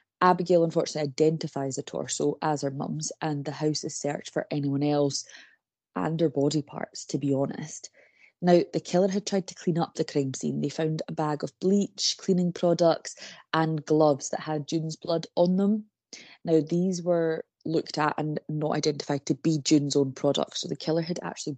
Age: 20-39